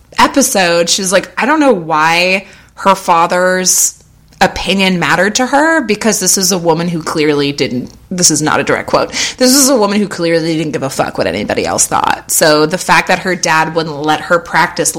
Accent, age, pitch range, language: American, 20-39, 170-220 Hz, English